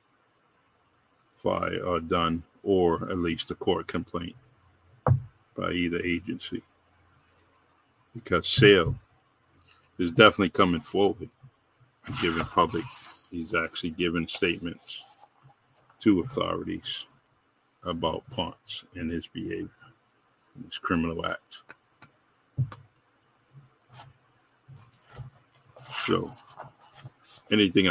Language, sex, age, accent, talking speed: English, male, 50-69, American, 75 wpm